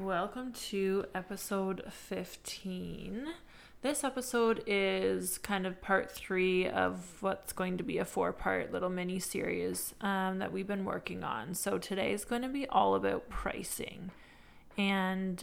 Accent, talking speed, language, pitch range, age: American, 135 wpm, English, 180-205 Hz, 20-39